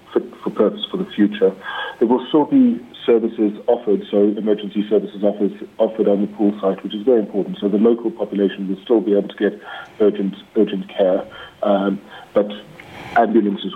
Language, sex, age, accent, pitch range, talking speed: English, male, 40-59, British, 95-105 Hz, 180 wpm